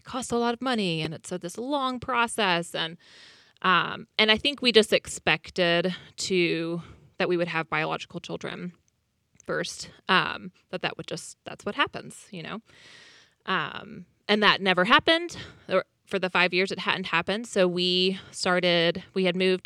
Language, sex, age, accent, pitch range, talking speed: English, female, 20-39, American, 170-205 Hz, 170 wpm